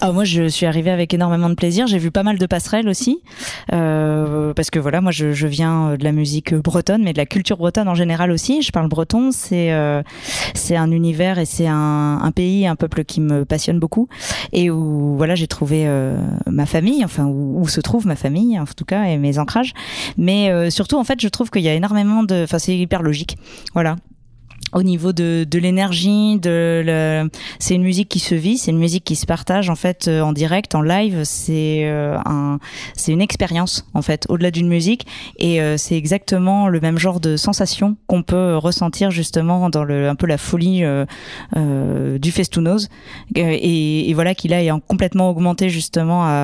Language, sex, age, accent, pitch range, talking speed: French, female, 20-39, French, 155-185 Hz, 205 wpm